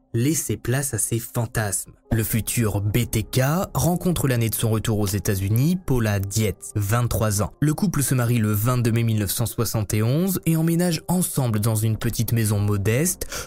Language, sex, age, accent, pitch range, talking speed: French, male, 20-39, French, 110-155 Hz, 155 wpm